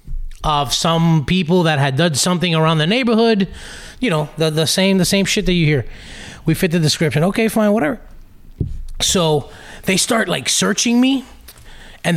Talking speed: 175 wpm